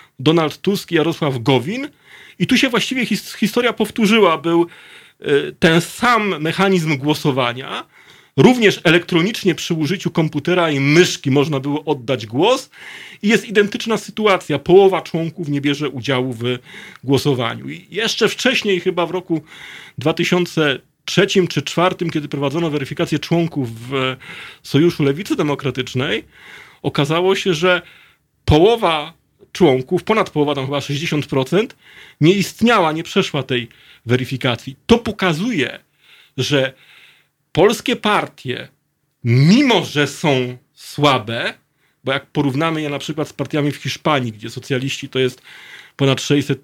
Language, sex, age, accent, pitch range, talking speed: Polish, male, 30-49, native, 135-185 Hz, 125 wpm